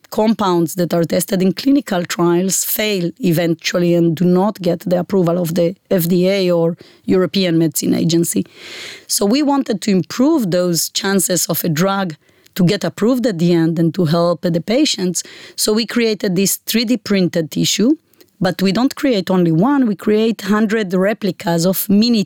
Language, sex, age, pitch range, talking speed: English, female, 30-49, 175-225 Hz, 165 wpm